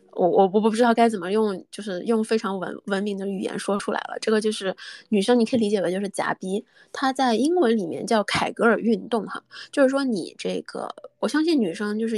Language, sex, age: Chinese, female, 20-39